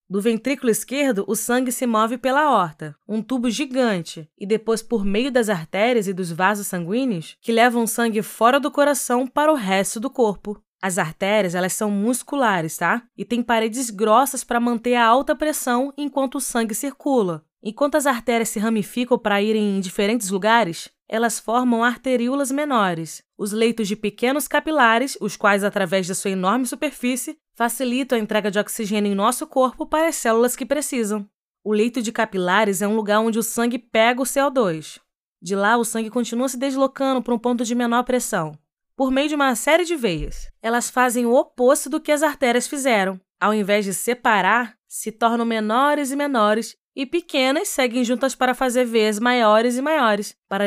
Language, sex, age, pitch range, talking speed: Portuguese, female, 20-39, 210-270 Hz, 180 wpm